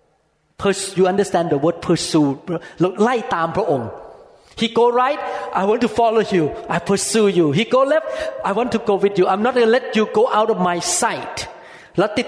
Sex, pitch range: male, 160-230 Hz